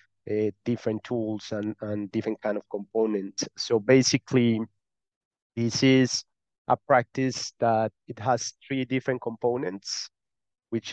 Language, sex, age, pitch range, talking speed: English, male, 30-49, 110-120 Hz, 120 wpm